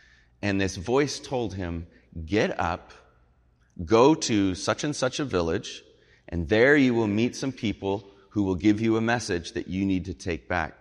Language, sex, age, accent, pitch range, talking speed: English, male, 30-49, American, 90-115 Hz, 185 wpm